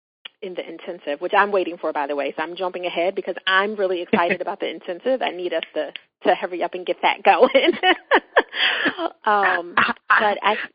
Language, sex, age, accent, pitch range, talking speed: English, female, 30-49, American, 170-200 Hz, 195 wpm